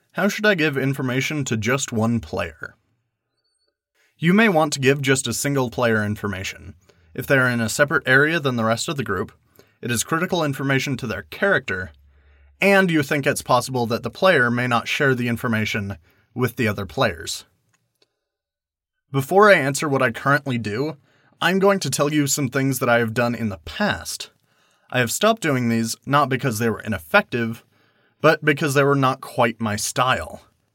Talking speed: 185 wpm